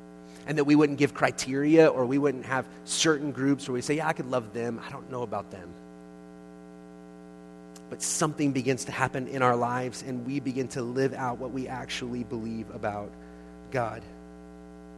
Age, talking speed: 30-49, 180 wpm